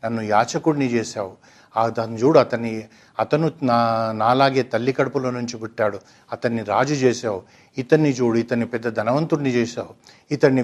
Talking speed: 130 wpm